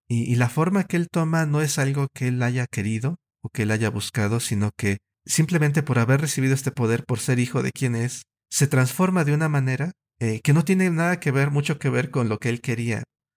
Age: 50-69